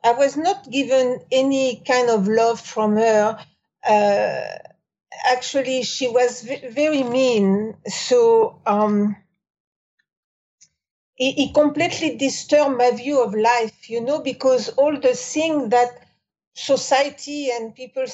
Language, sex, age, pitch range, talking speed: English, female, 50-69, 220-285 Hz, 120 wpm